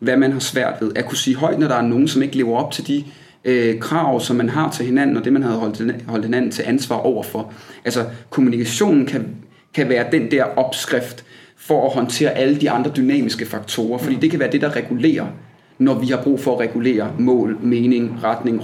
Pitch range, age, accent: 120-145 Hz, 30-49, native